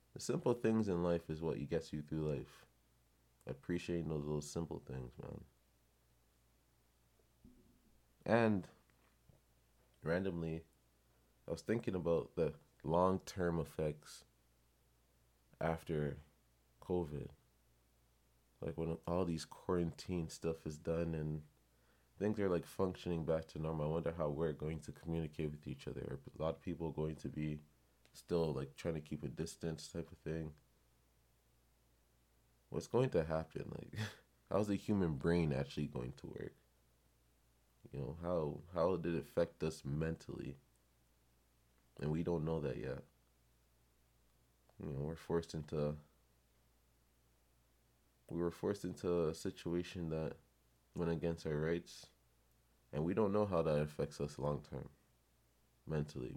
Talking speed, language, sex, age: 135 wpm, English, male, 20-39